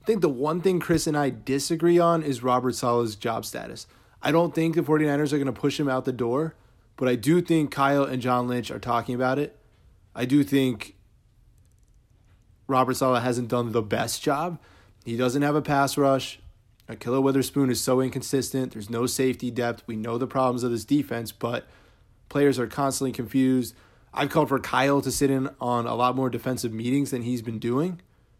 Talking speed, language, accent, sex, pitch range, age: 205 wpm, English, American, male, 115-145 Hz, 20-39